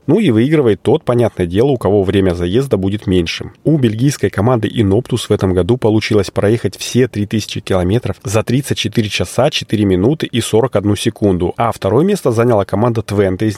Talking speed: 170 wpm